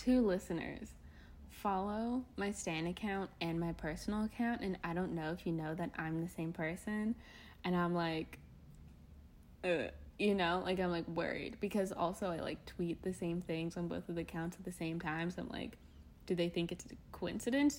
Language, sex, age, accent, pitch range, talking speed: English, female, 10-29, American, 165-215 Hz, 195 wpm